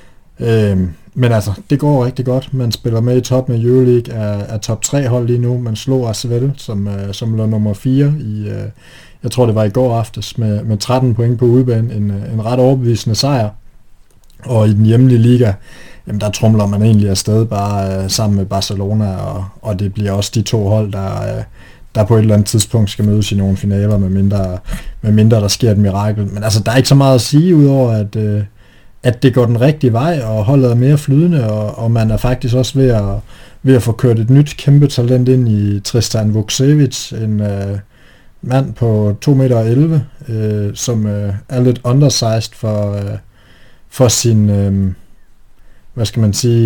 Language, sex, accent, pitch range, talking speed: Danish, male, native, 105-125 Hz, 190 wpm